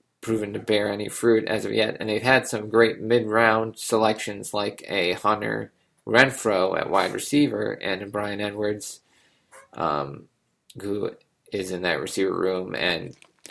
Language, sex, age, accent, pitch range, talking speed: English, male, 20-39, American, 100-120 Hz, 145 wpm